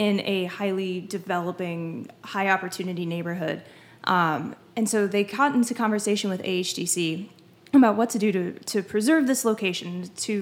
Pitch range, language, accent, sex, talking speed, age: 185-220 Hz, English, American, female, 145 wpm, 10-29